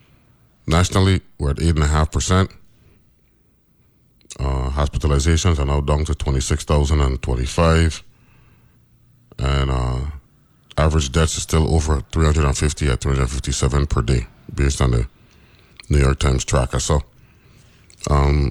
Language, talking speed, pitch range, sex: English, 110 wpm, 65-85 Hz, male